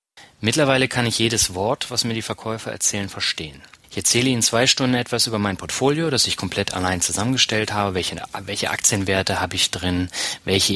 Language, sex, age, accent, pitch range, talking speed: German, male, 30-49, German, 90-115 Hz, 185 wpm